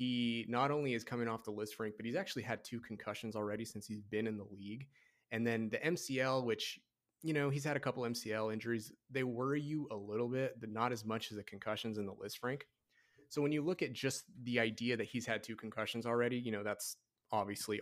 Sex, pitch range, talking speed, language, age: male, 105-125 Hz, 235 wpm, English, 30-49